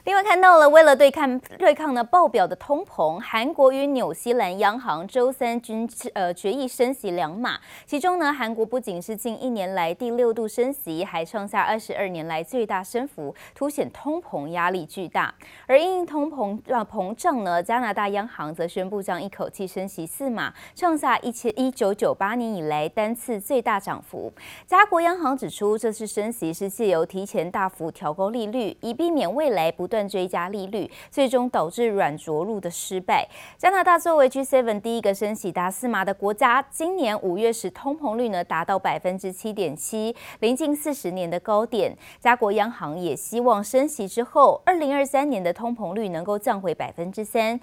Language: Chinese